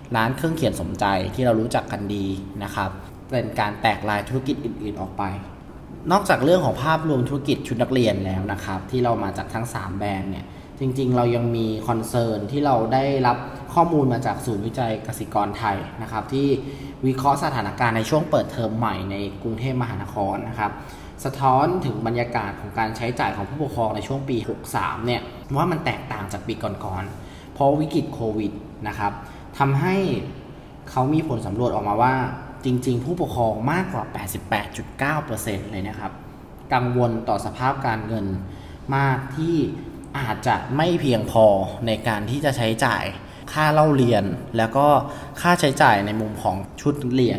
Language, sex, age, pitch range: Thai, male, 20-39, 105-135 Hz